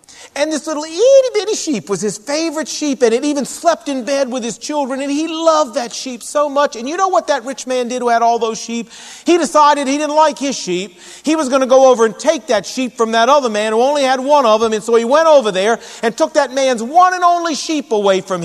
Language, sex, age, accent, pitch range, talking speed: English, male, 40-59, American, 220-300 Hz, 265 wpm